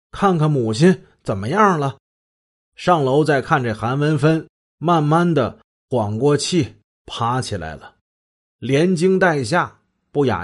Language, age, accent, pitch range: Chinese, 30-49, native, 105-155 Hz